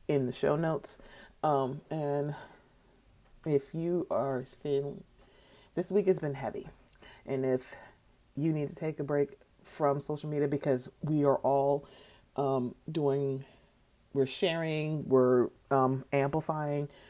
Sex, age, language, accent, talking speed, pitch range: female, 30-49, English, American, 130 wpm, 125-145 Hz